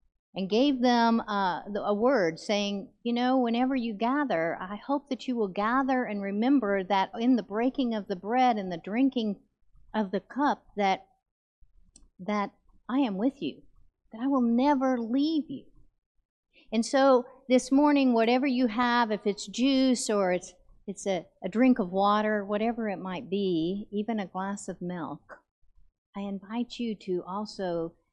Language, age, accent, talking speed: English, 50-69, American, 165 wpm